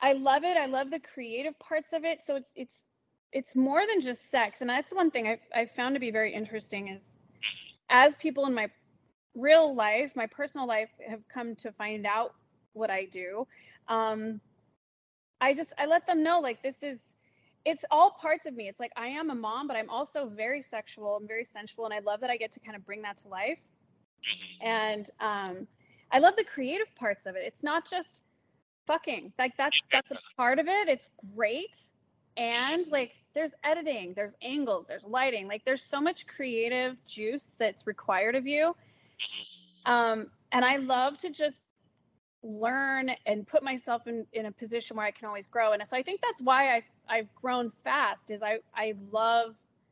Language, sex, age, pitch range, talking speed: English, female, 20-39, 215-280 Hz, 195 wpm